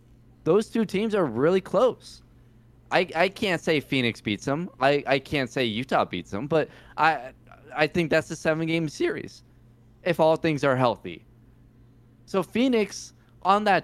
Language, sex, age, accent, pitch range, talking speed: English, male, 20-39, American, 120-165 Hz, 160 wpm